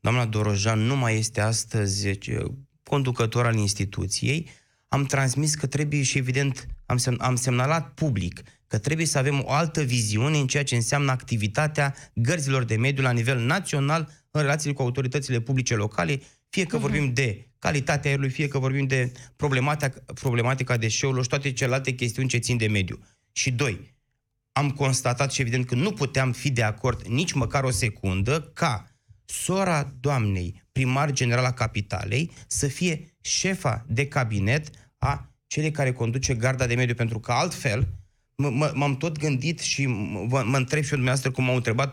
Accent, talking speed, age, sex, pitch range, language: native, 165 wpm, 20-39, male, 115-140 Hz, Romanian